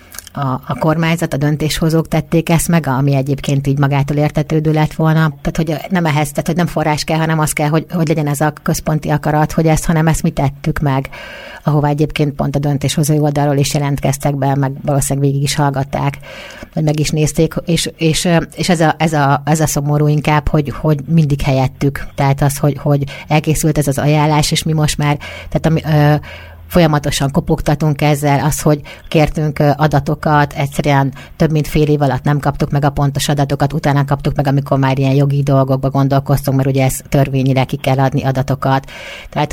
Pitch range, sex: 140-155 Hz, female